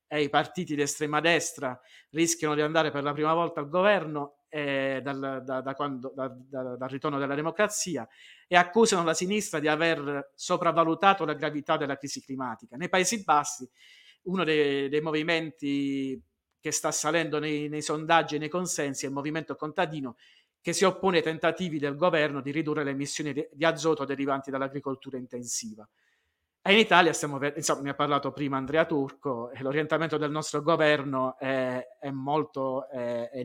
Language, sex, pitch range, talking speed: Italian, male, 135-165 Hz, 165 wpm